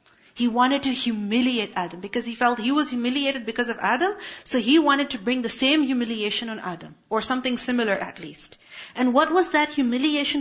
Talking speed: 195 wpm